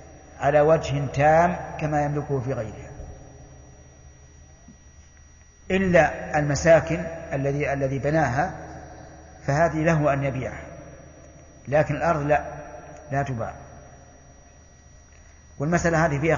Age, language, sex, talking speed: 50-69, Arabic, male, 90 wpm